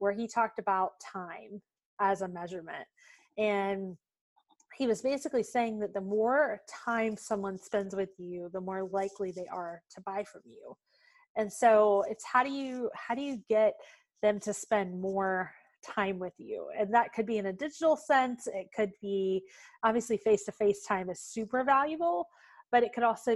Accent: American